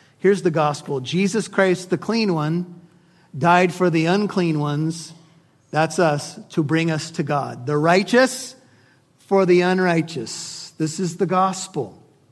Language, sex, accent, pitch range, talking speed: English, male, American, 145-185 Hz, 140 wpm